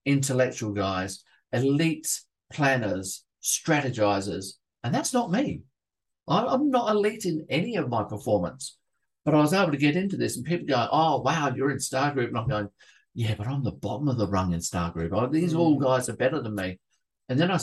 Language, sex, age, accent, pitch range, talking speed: English, male, 50-69, Australian, 105-140 Hz, 195 wpm